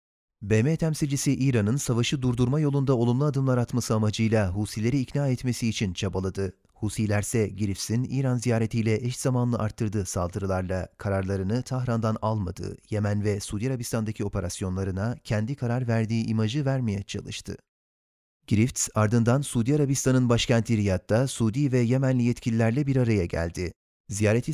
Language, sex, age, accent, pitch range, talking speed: Turkish, male, 30-49, native, 105-125 Hz, 125 wpm